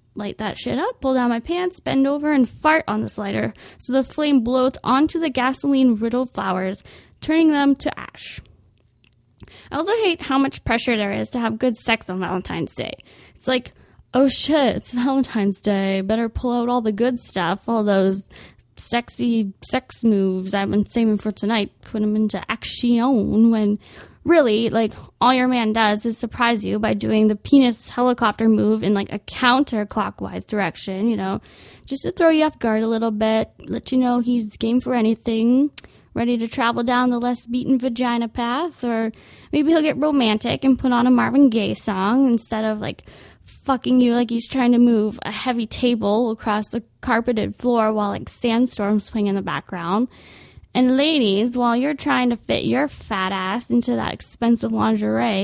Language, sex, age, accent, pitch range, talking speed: English, female, 20-39, American, 210-255 Hz, 180 wpm